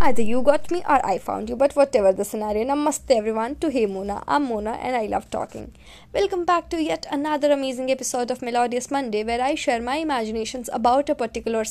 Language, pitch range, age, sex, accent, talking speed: Hindi, 230-290 Hz, 20-39, female, native, 215 wpm